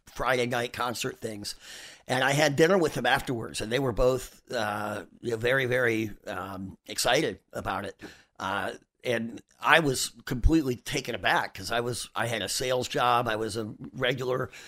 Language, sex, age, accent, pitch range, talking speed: English, male, 50-69, American, 120-140 Hz, 175 wpm